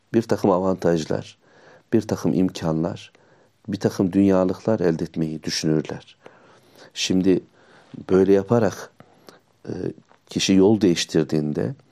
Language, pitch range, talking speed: Turkish, 85-100 Hz, 90 wpm